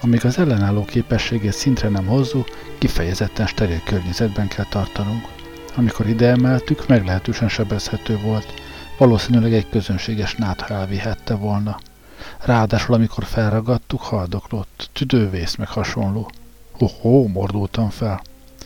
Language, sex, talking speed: Hungarian, male, 105 wpm